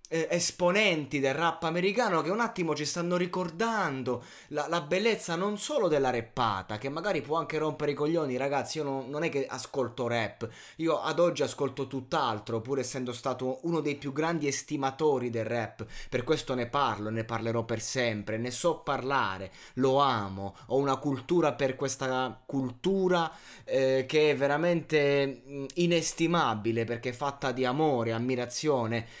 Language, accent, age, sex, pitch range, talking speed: Italian, native, 20-39, male, 120-165 Hz, 155 wpm